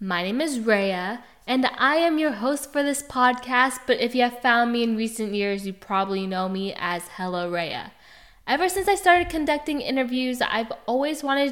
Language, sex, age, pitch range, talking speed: English, female, 10-29, 195-255 Hz, 195 wpm